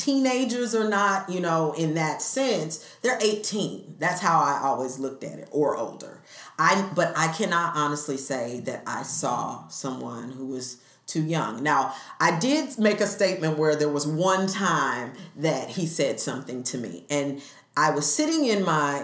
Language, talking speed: English, 175 wpm